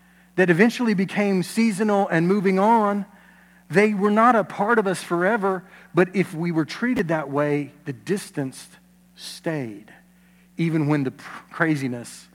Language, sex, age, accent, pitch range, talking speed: English, male, 40-59, American, 145-180 Hz, 140 wpm